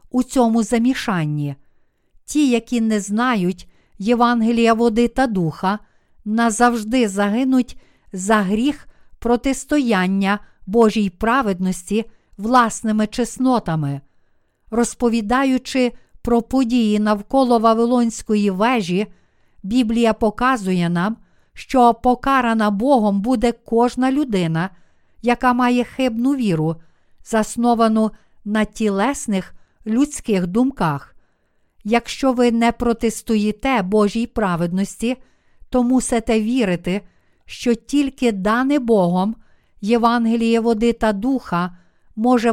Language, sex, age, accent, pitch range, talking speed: Ukrainian, female, 50-69, native, 210-245 Hz, 85 wpm